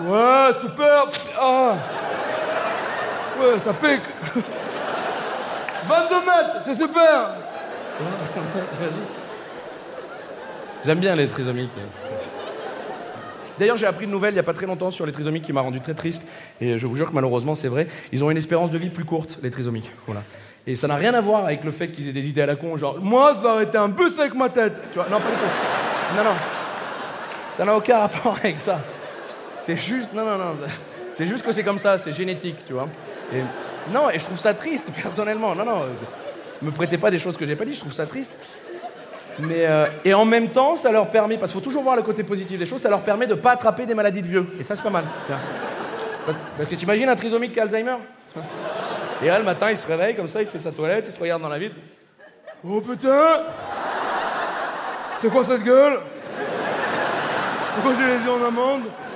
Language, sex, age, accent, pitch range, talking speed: French, male, 40-59, French, 160-240 Hz, 210 wpm